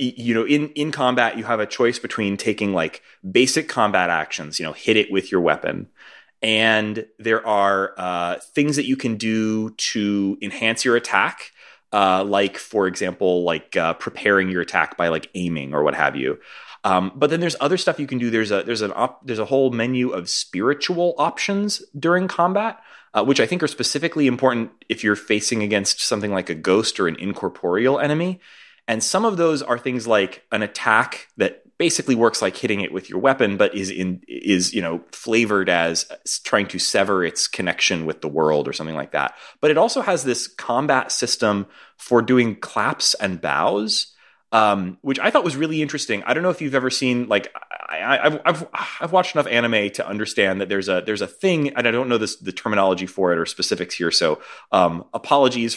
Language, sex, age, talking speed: English, male, 30-49, 205 wpm